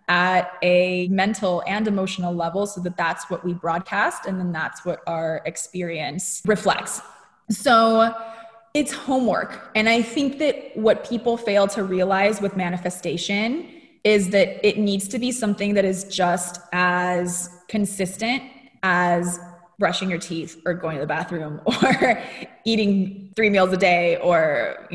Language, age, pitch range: English, 20-39, 180-225 Hz